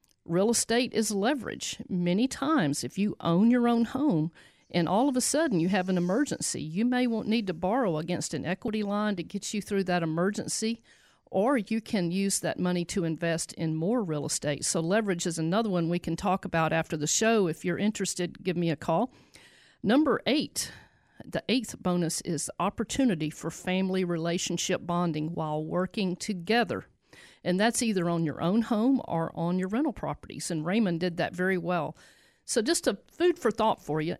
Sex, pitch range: female, 170-230 Hz